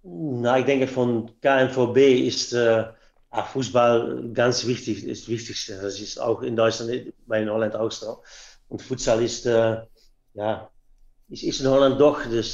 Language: German